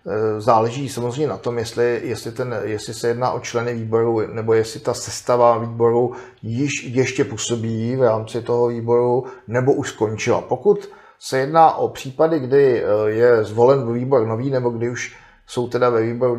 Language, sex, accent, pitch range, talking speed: Czech, male, native, 115-125 Hz, 165 wpm